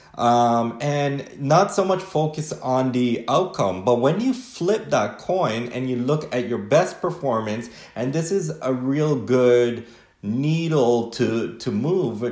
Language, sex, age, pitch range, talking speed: English, male, 30-49, 120-145 Hz, 155 wpm